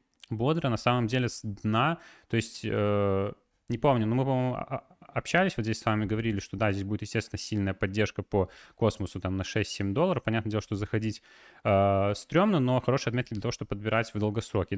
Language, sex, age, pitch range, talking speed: Russian, male, 20-39, 100-120 Hz, 195 wpm